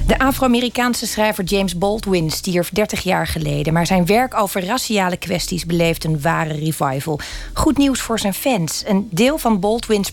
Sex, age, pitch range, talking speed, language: female, 40-59, 170-215 Hz, 165 wpm, Dutch